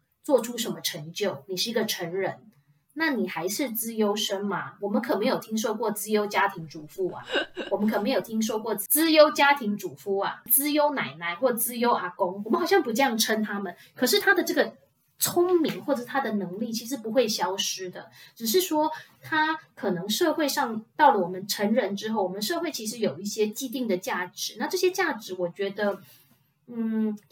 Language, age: Chinese, 20-39